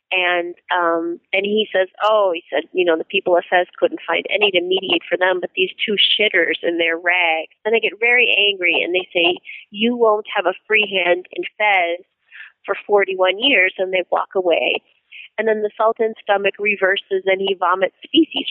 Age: 30-49